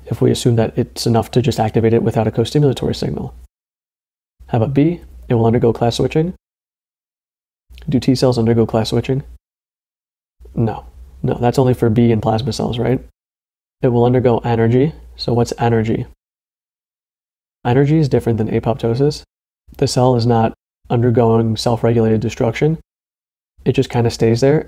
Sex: male